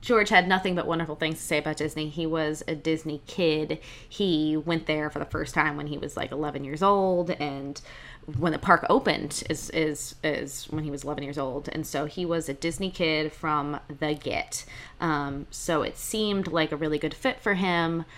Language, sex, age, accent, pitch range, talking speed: English, female, 20-39, American, 150-185 Hz, 210 wpm